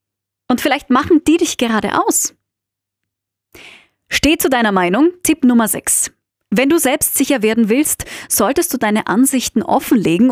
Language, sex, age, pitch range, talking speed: German, female, 20-39, 215-295 Hz, 145 wpm